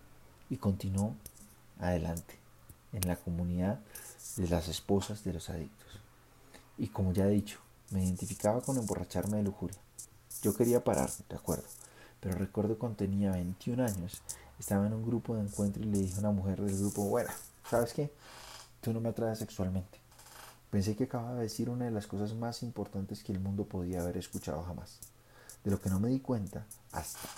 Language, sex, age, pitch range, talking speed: English, male, 30-49, 95-120 Hz, 180 wpm